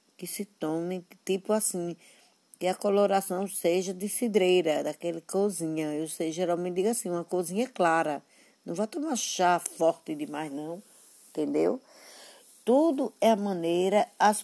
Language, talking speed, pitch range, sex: Portuguese, 140 wpm, 160-215 Hz, female